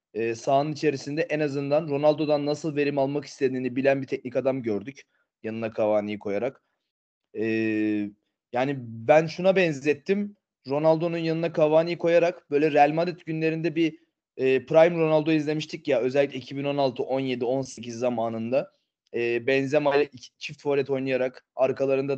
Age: 30-49